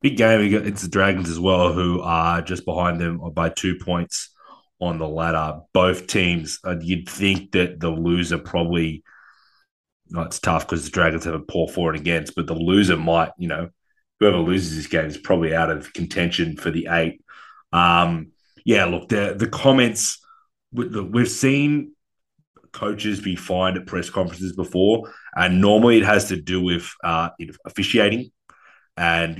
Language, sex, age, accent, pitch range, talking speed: English, male, 30-49, Australian, 85-100 Hz, 165 wpm